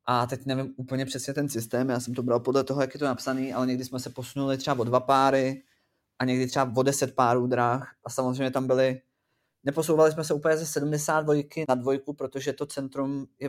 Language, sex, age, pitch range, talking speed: Czech, male, 20-39, 125-140 Hz, 220 wpm